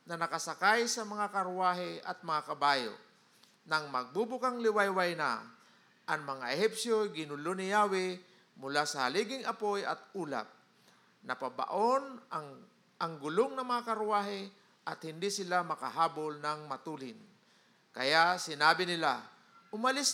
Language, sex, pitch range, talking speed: Filipino, male, 160-220 Hz, 120 wpm